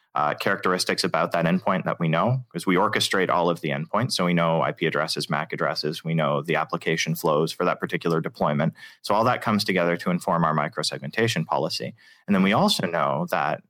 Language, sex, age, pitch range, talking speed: English, male, 30-49, 85-115 Hz, 205 wpm